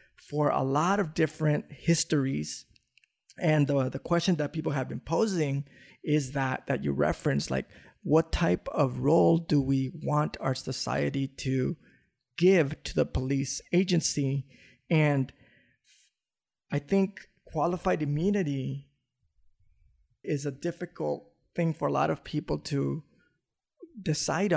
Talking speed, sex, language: 125 wpm, male, English